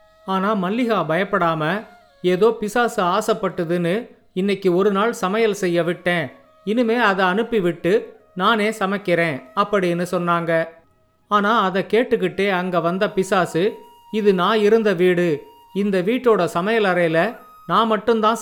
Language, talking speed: Tamil, 110 wpm